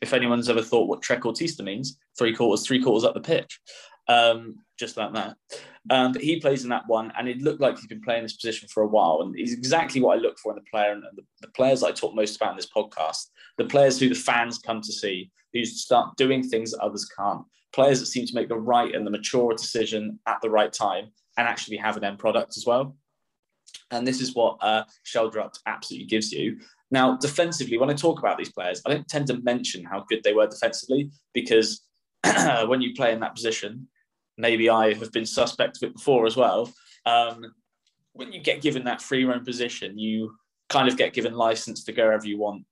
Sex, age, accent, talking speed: male, 20-39, British, 230 wpm